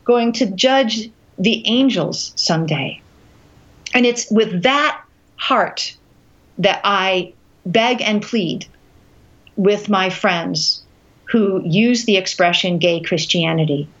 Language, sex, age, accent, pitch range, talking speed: English, female, 50-69, American, 175-225 Hz, 105 wpm